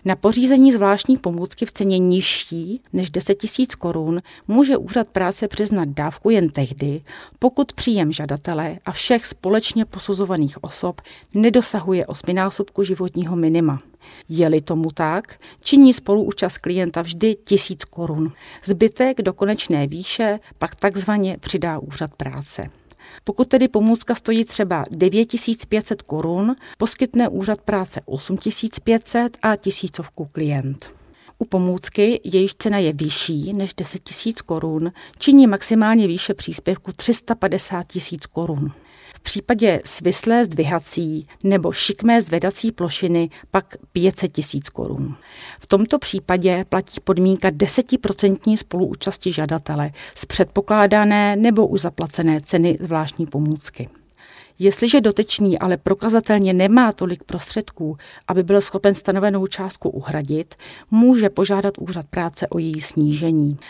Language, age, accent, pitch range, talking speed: Czech, 40-59, native, 165-215 Hz, 120 wpm